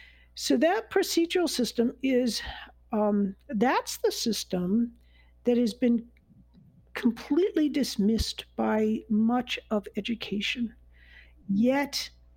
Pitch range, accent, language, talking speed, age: 205-260 Hz, American, English, 90 wpm, 60-79